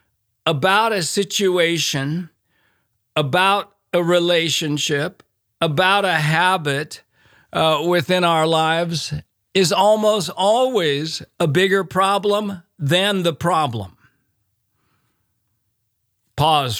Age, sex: 50-69, male